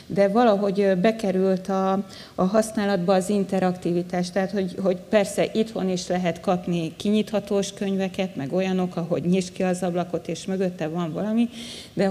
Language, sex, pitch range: Hungarian, female, 185-205 Hz